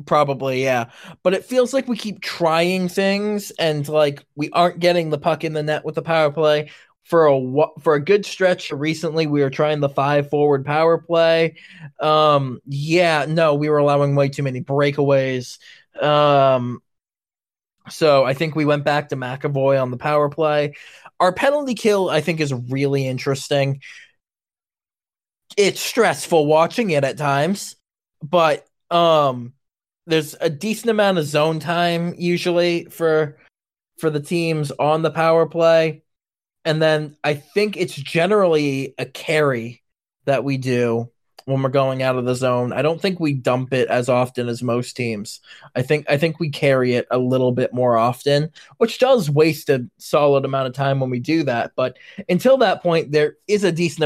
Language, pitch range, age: English, 135-165 Hz, 20-39